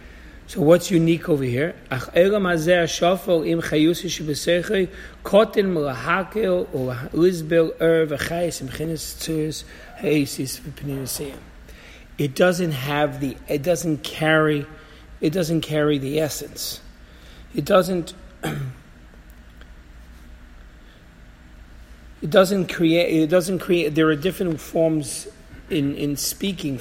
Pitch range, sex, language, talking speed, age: 135-180 Hz, male, English, 70 wpm, 50-69